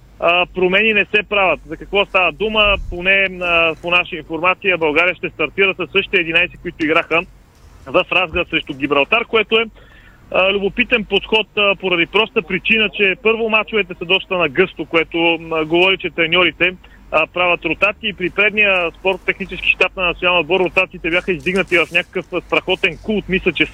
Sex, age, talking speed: male, 30-49, 160 wpm